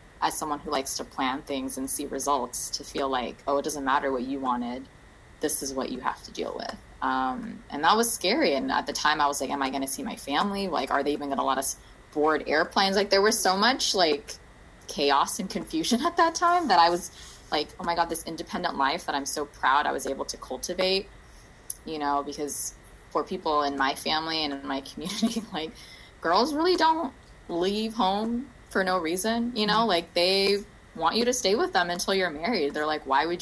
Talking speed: 225 wpm